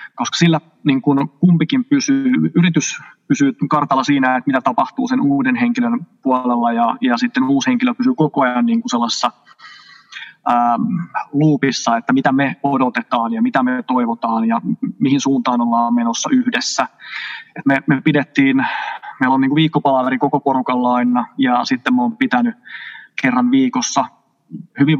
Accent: native